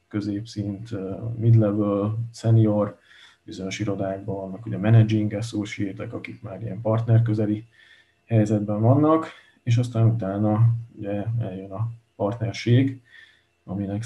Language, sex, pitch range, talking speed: Hungarian, male, 100-115 Hz, 100 wpm